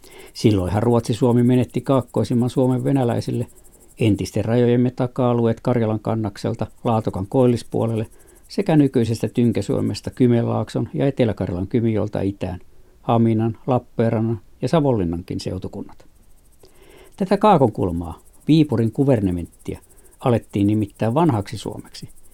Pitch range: 100-125 Hz